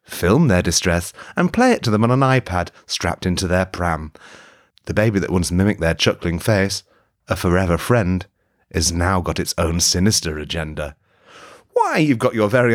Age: 30-49